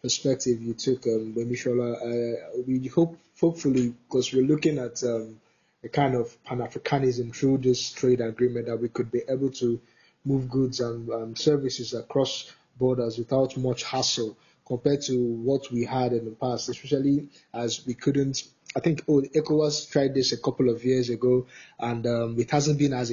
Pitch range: 120-145 Hz